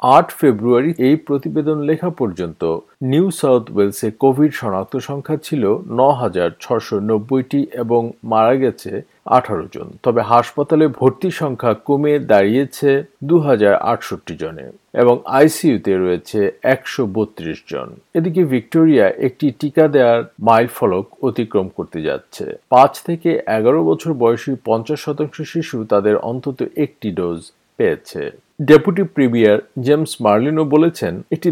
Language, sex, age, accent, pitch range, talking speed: Bengali, male, 50-69, native, 115-150 Hz, 80 wpm